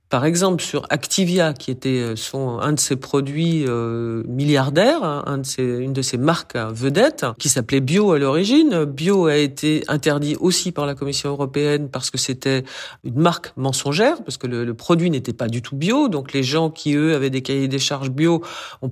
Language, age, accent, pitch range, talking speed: French, 40-59, French, 135-170 Hz, 205 wpm